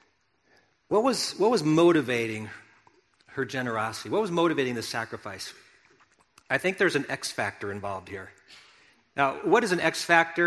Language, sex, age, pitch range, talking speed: English, male, 40-59, 135-185 Hz, 150 wpm